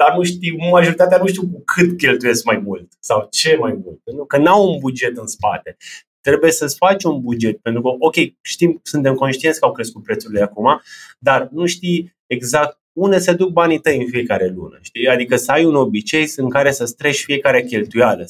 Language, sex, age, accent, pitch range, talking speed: Romanian, male, 20-39, native, 125-165 Hz, 205 wpm